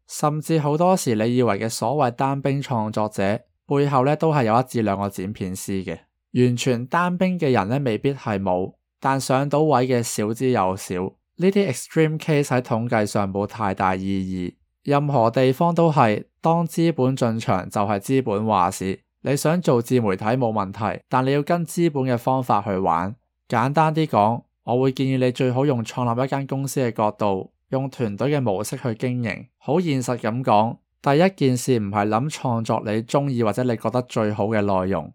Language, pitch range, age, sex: Chinese, 105-140 Hz, 20-39, male